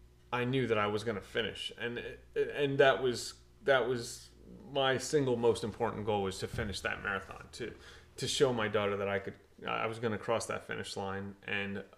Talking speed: 205 wpm